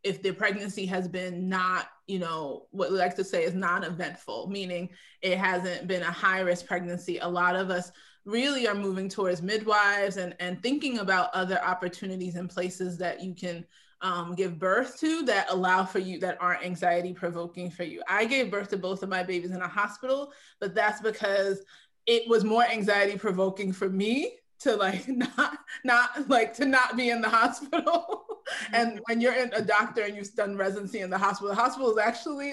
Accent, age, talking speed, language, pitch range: American, 20-39, 195 wpm, English, 185-245 Hz